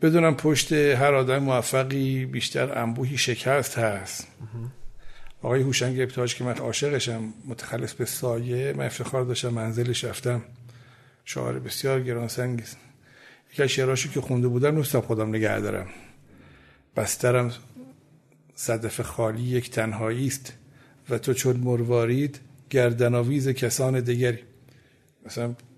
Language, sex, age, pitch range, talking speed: Persian, male, 60-79, 120-145 Hz, 110 wpm